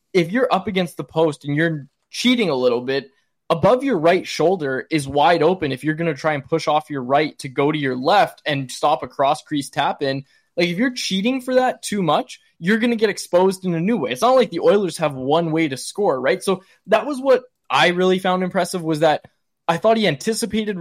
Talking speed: 240 wpm